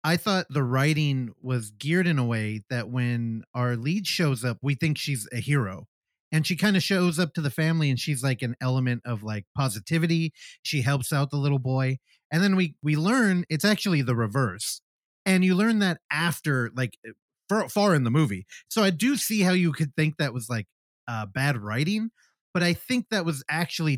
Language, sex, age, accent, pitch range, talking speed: English, male, 30-49, American, 130-185 Hz, 210 wpm